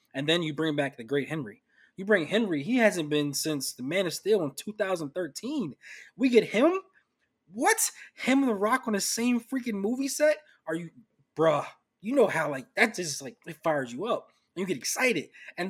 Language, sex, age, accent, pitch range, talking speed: English, male, 20-39, American, 135-185 Hz, 205 wpm